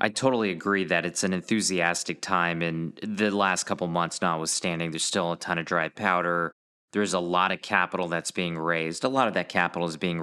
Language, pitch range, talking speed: English, 85-95 Hz, 210 wpm